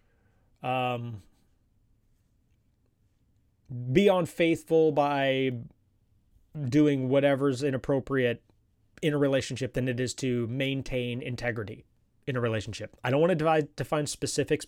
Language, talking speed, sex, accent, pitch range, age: English, 100 wpm, male, American, 115-160 Hz, 30-49